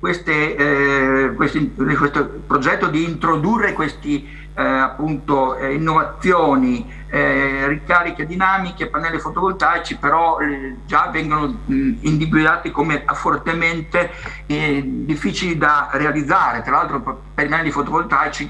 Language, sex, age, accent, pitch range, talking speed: Italian, male, 50-69, native, 150-195 Hz, 90 wpm